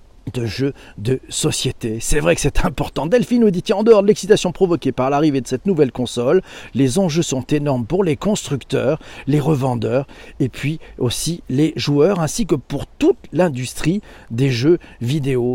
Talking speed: 180 wpm